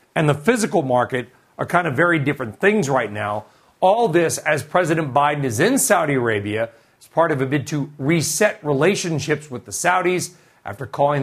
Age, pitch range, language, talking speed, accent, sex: 40-59, 135-175 Hz, English, 180 wpm, American, male